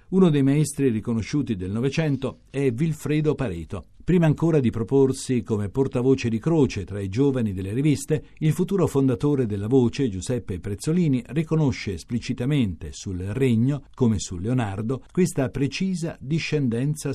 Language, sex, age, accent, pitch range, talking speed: Italian, male, 50-69, native, 110-145 Hz, 135 wpm